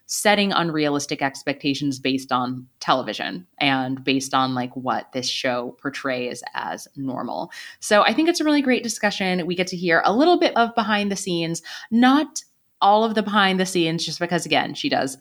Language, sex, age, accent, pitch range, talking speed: English, female, 20-39, American, 145-200 Hz, 185 wpm